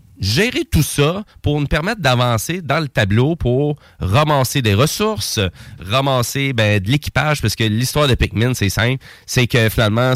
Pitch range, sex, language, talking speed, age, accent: 110-140 Hz, male, French, 165 wpm, 30-49, Canadian